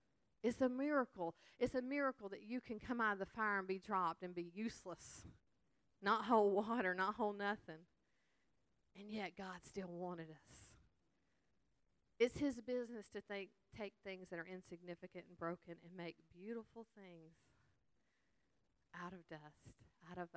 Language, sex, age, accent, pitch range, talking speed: English, female, 40-59, American, 180-230 Hz, 155 wpm